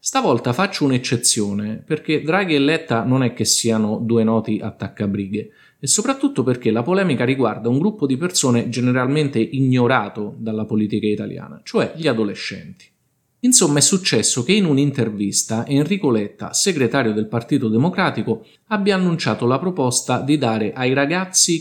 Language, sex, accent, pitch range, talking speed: Italian, male, native, 110-145 Hz, 145 wpm